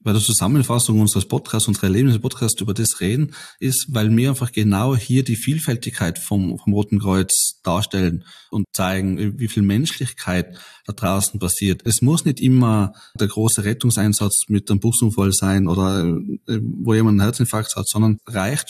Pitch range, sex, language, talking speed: 100-125 Hz, male, German, 160 wpm